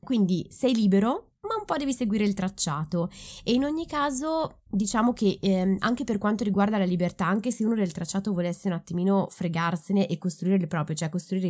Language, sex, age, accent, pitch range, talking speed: Italian, female, 20-39, native, 160-195 Hz, 200 wpm